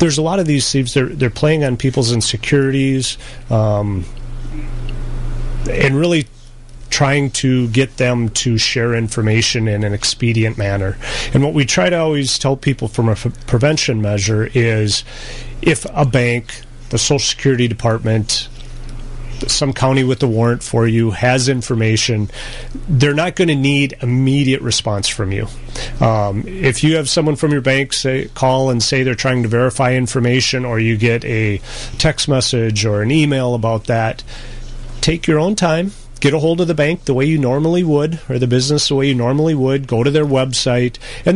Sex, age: male, 30-49